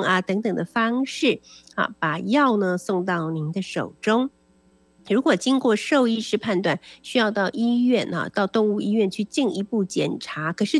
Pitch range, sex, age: 180-240 Hz, female, 50-69